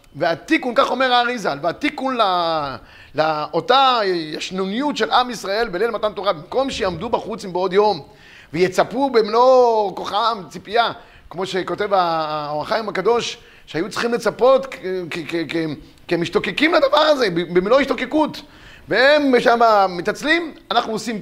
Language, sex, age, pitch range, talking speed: Hebrew, male, 30-49, 190-260 Hz, 135 wpm